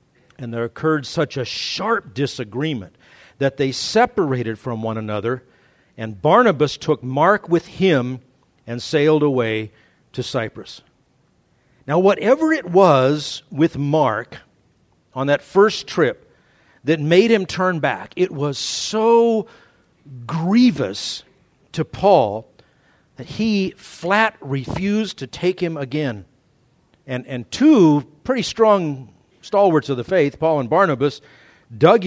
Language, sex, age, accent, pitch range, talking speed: English, male, 50-69, American, 125-185 Hz, 125 wpm